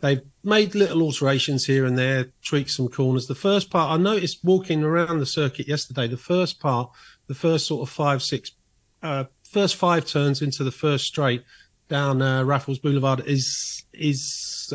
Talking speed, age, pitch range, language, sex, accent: 175 wpm, 40-59, 125-155 Hz, English, male, British